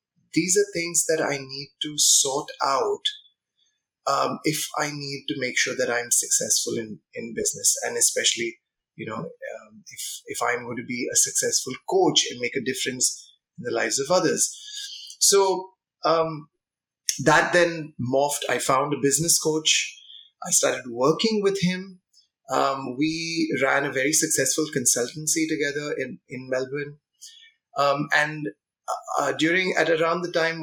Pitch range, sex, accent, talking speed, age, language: 140-185 Hz, male, Indian, 155 wpm, 30-49, English